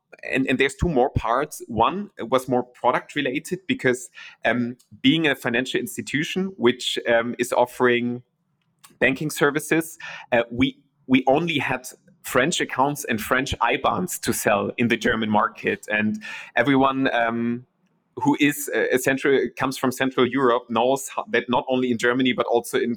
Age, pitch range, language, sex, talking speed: 30-49, 120-135 Hz, English, male, 160 wpm